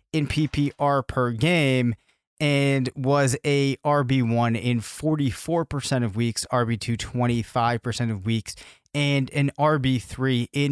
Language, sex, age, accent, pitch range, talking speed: English, male, 30-49, American, 120-140 Hz, 110 wpm